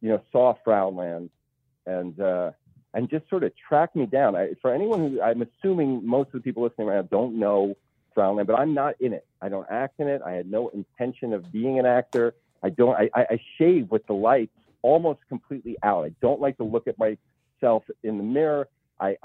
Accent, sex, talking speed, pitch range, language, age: American, male, 220 wpm, 105-135 Hz, English, 40-59